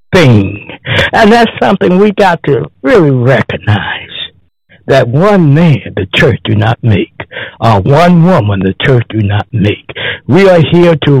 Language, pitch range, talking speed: English, 130-185 Hz, 150 wpm